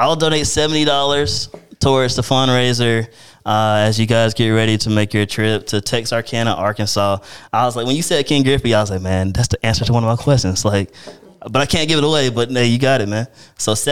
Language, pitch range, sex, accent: English, 105-125 Hz, male, American